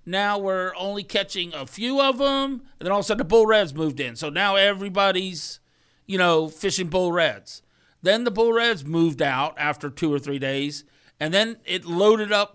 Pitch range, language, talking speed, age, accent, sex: 155-200 Hz, English, 205 wpm, 40-59, American, male